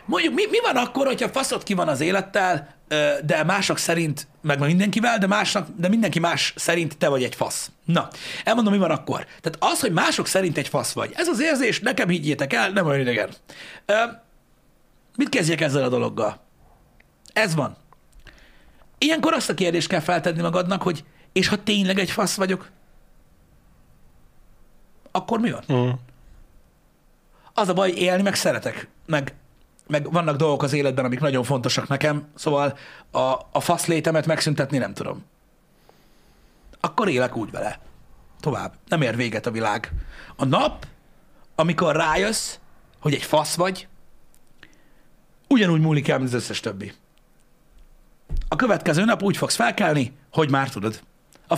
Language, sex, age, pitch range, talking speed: Hungarian, male, 60-79, 135-190 Hz, 155 wpm